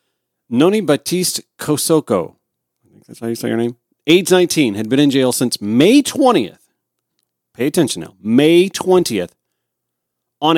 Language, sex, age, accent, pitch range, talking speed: English, male, 40-59, American, 115-170 Hz, 145 wpm